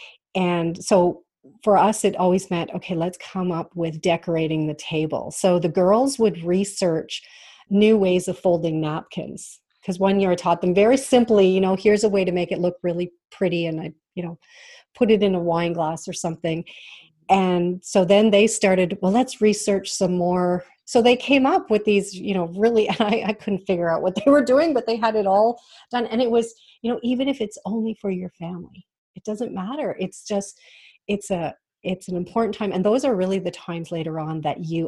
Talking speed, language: 210 wpm, English